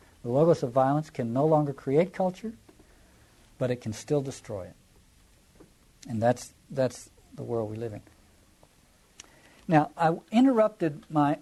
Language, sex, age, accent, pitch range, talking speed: English, male, 60-79, American, 115-155 Hz, 140 wpm